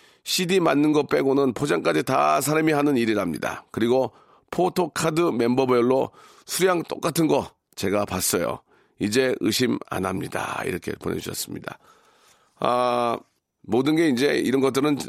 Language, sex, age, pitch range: Korean, male, 40-59, 115-165 Hz